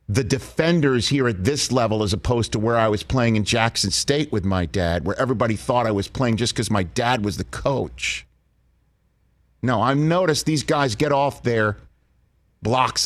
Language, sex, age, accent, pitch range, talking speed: English, male, 50-69, American, 105-140 Hz, 190 wpm